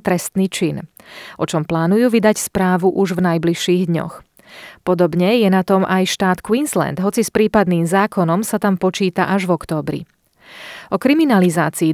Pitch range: 175-215 Hz